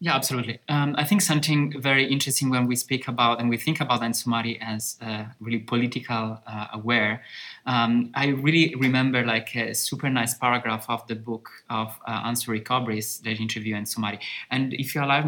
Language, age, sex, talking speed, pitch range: English, 20-39, male, 180 wpm, 115-135 Hz